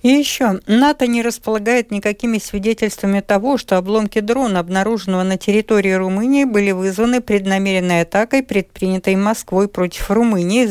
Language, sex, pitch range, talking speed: Russian, female, 180-230 Hz, 130 wpm